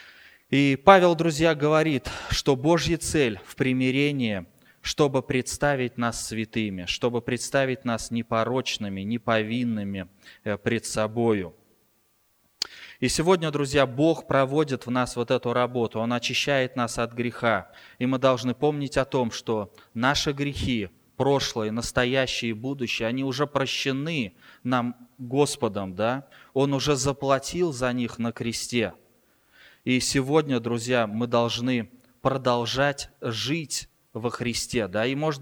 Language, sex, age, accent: Russian, male, 20-39, native